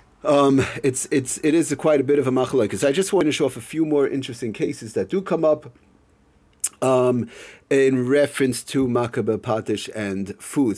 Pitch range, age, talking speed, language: 110-145 Hz, 40-59, 210 wpm, English